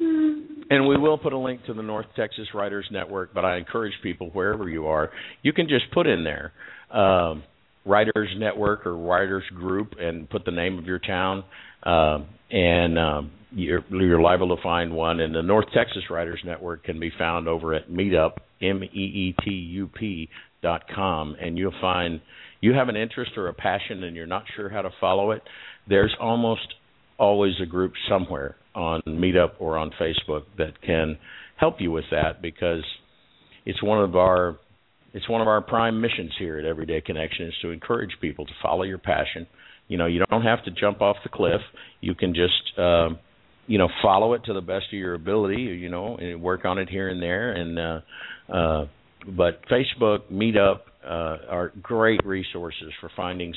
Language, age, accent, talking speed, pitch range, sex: English, 50-69, American, 185 wpm, 85-100 Hz, male